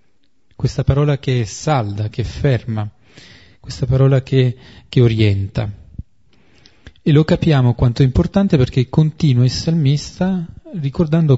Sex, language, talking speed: male, Italian, 125 wpm